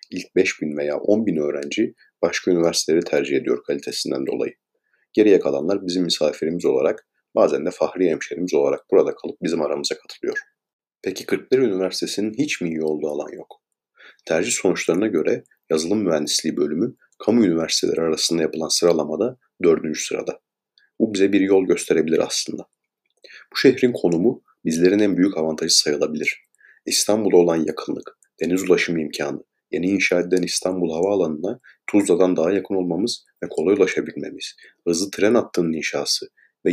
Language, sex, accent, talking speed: Turkish, male, native, 140 wpm